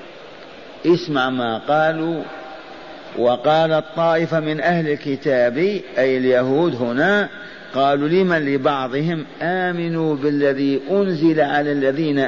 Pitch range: 135-185 Hz